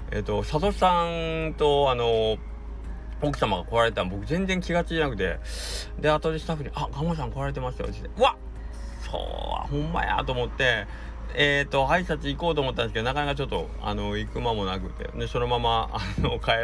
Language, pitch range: Japanese, 90-145 Hz